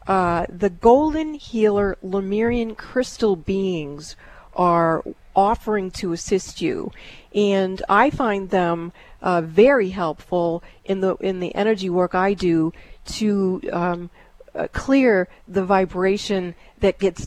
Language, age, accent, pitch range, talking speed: English, 40-59, American, 180-210 Hz, 120 wpm